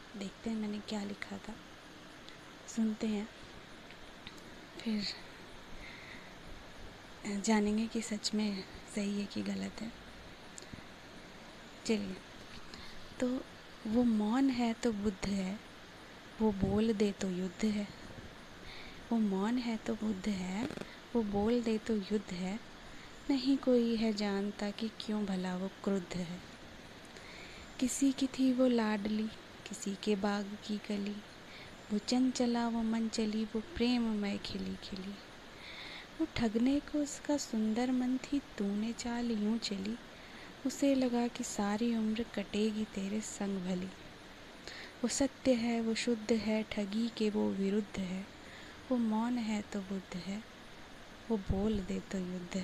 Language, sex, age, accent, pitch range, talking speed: Hindi, female, 20-39, native, 205-235 Hz, 130 wpm